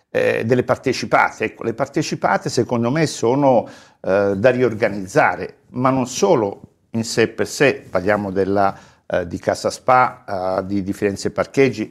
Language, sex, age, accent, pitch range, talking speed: Italian, male, 50-69, native, 110-155 Hz, 145 wpm